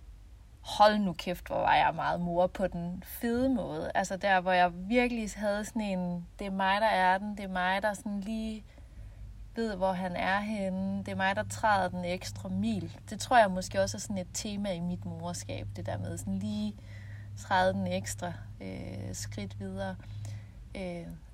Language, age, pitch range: Danish, 30-49, 175-215 Hz